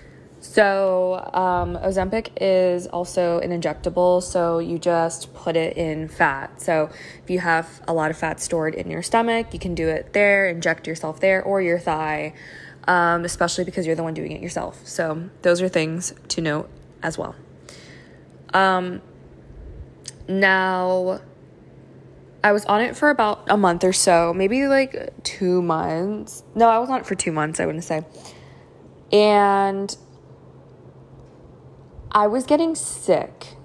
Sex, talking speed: female, 155 wpm